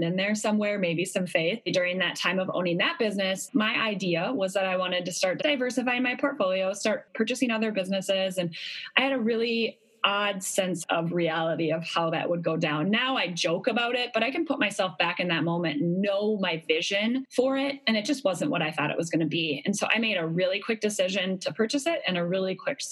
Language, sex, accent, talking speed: English, female, American, 235 wpm